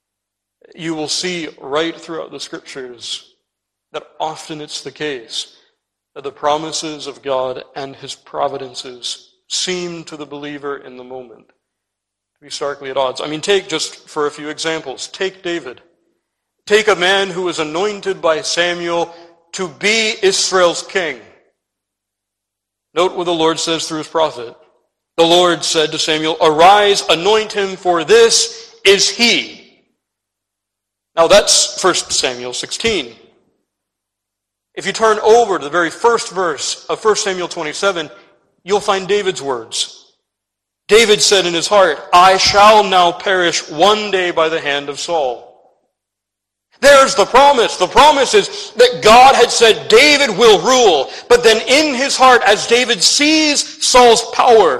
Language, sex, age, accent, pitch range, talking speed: English, male, 50-69, American, 140-210 Hz, 150 wpm